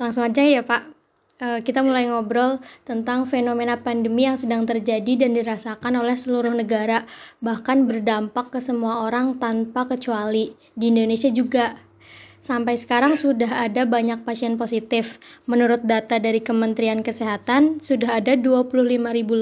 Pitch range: 230-260 Hz